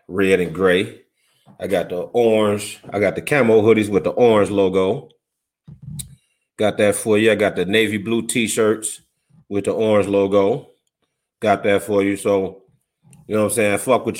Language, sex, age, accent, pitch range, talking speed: English, male, 30-49, American, 100-120 Hz, 180 wpm